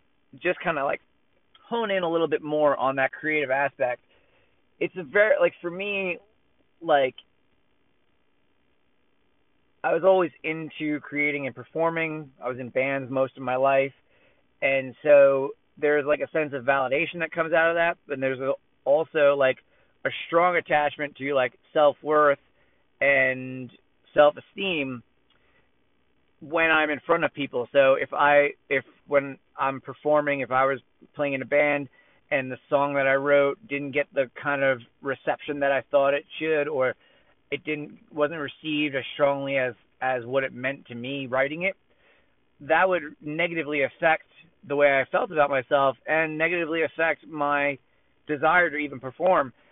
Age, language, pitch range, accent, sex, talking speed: 30-49, English, 135-160 Hz, American, male, 160 wpm